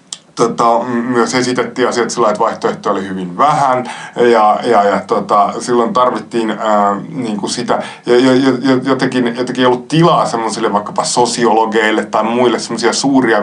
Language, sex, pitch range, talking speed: Finnish, male, 105-125 Hz, 135 wpm